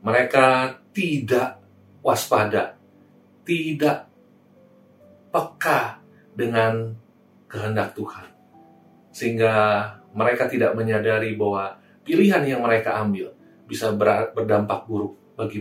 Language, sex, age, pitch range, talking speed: Indonesian, male, 40-59, 115-170 Hz, 80 wpm